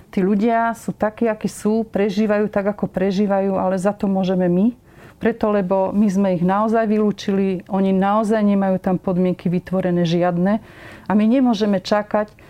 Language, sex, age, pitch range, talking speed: Slovak, female, 40-59, 185-215 Hz, 160 wpm